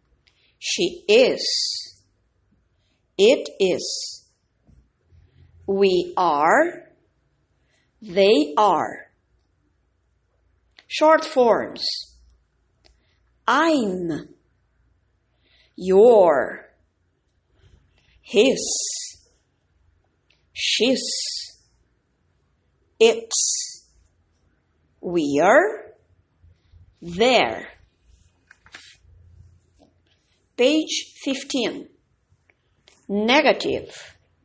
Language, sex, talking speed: English, female, 35 wpm